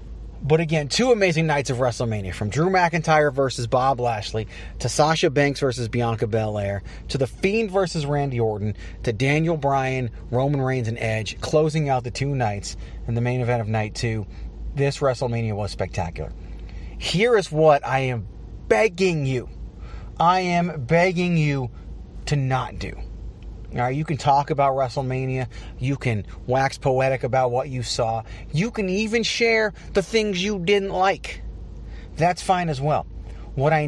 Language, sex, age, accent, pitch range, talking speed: English, male, 30-49, American, 110-160 Hz, 160 wpm